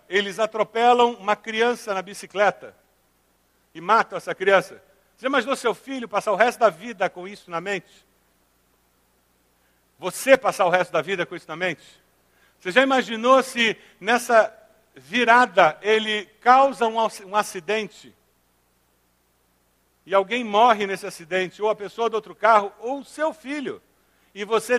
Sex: male